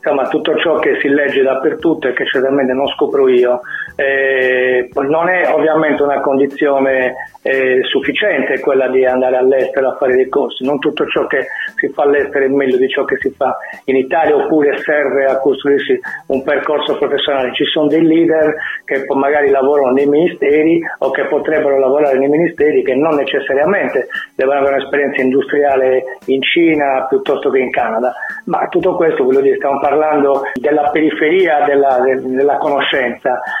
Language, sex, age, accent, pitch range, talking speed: Italian, male, 40-59, native, 135-170 Hz, 165 wpm